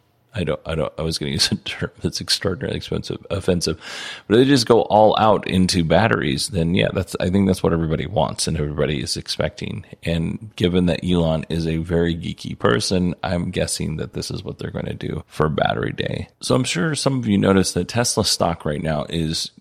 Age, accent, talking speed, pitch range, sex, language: 30-49, American, 215 wpm, 80-100 Hz, male, English